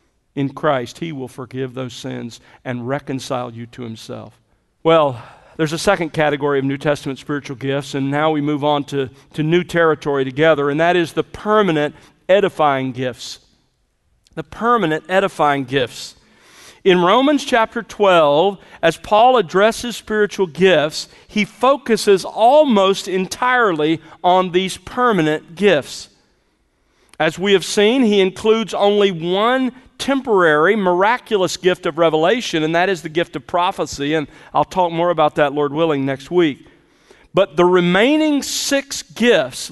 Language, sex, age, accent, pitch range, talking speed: English, male, 50-69, American, 150-205 Hz, 145 wpm